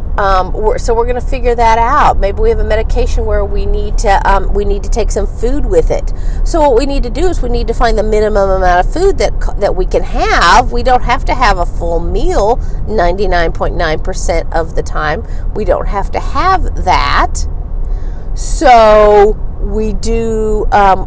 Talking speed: 195 wpm